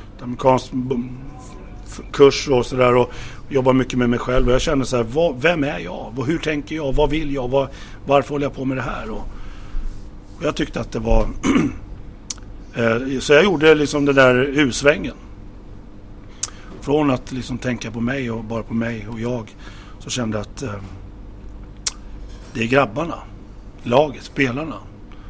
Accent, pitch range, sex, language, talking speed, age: native, 105-130 Hz, male, Swedish, 165 wpm, 60-79